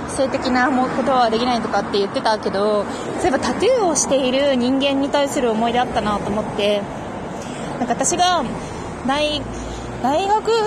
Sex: female